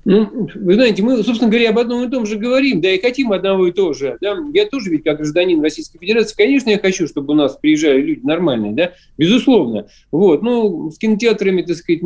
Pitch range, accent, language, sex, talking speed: 155-225 Hz, native, Russian, male, 220 wpm